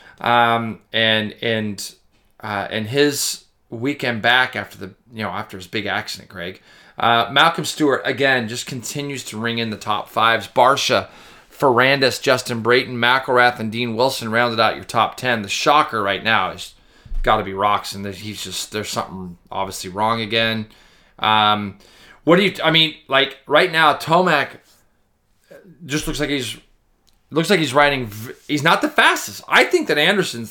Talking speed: 170 wpm